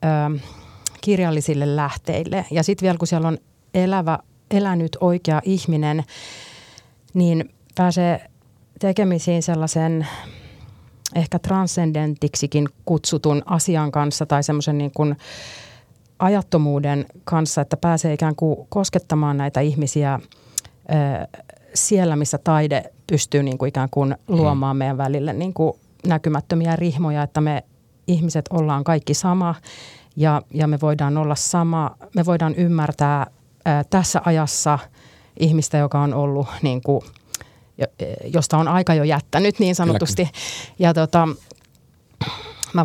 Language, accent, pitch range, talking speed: Finnish, native, 140-170 Hz, 105 wpm